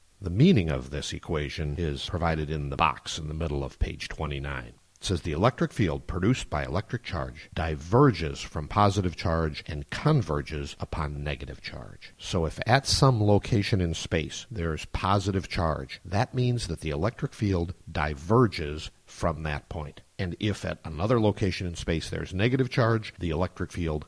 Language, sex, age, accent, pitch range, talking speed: English, male, 50-69, American, 80-110 Hz, 170 wpm